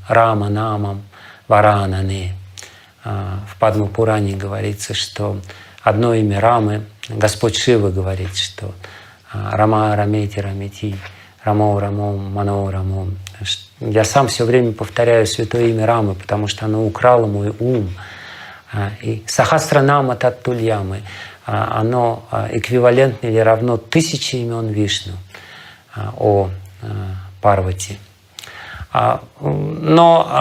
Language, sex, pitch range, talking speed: Russian, male, 100-130 Hz, 95 wpm